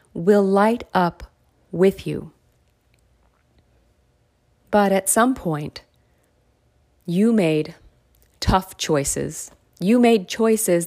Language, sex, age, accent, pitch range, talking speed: English, female, 40-59, American, 170-215 Hz, 90 wpm